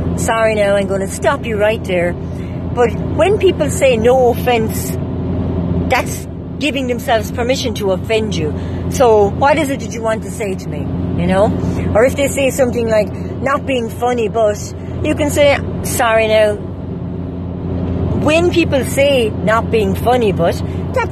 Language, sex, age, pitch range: English, female, 40-59, 225-350 Hz